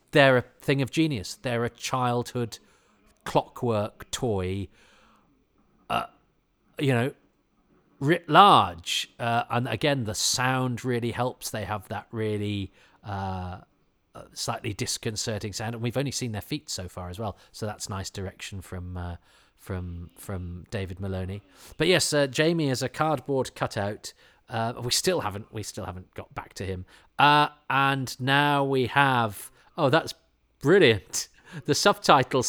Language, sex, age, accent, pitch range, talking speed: English, male, 40-59, British, 95-130 Hz, 140 wpm